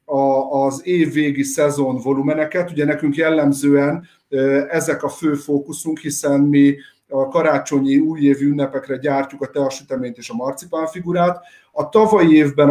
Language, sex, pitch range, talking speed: Hungarian, male, 135-160 Hz, 130 wpm